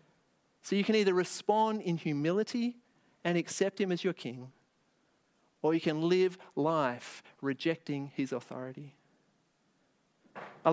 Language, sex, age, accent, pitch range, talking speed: English, male, 40-59, Australian, 150-200 Hz, 125 wpm